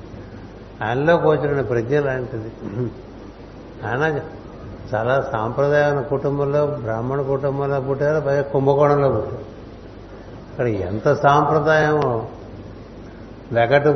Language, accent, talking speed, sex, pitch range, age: Telugu, native, 75 wpm, male, 110-145 Hz, 60-79